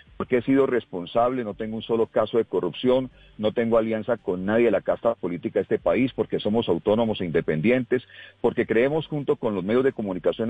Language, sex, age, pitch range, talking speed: Spanish, male, 40-59, 100-125 Hz, 205 wpm